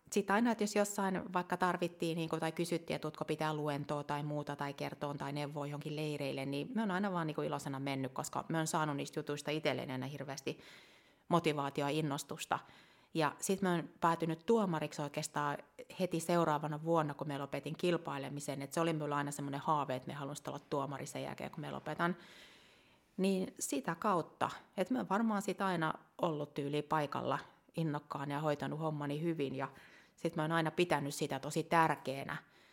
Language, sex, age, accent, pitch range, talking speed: Finnish, female, 30-49, native, 145-170 Hz, 170 wpm